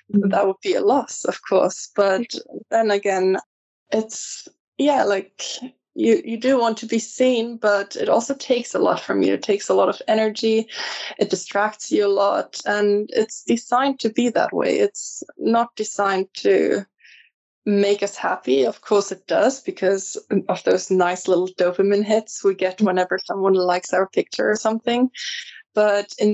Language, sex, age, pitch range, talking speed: English, female, 20-39, 195-235 Hz, 170 wpm